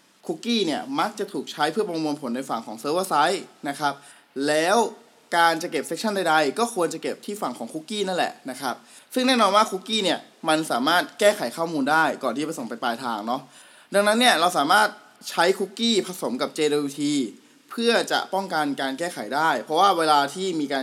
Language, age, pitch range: Thai, 20-39, 140-200 Hz